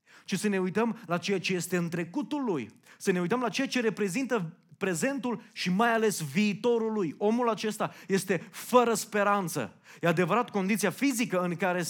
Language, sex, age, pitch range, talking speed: Romanian, male, 30-49, 180-235 Hz, 175 wpm